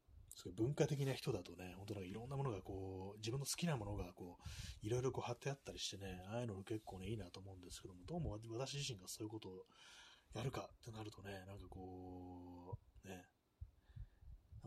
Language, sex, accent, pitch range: Japanese, male, native, 90-120 Hz